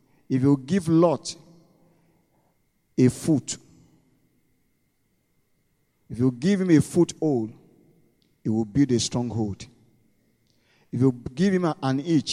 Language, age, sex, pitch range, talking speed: English, 50-69, male, 125-170 Hz, 110 wpm